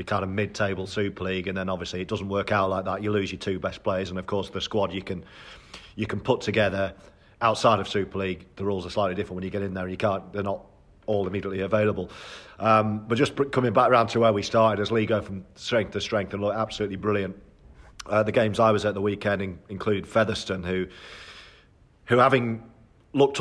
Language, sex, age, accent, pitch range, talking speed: English, male, 40-59, British, 95-110 Hz, 230 wpm